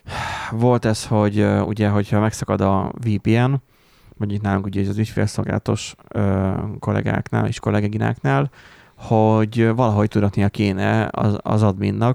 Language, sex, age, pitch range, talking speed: Hungarian, male, 20-39, 100-115 Hz, 120 wpm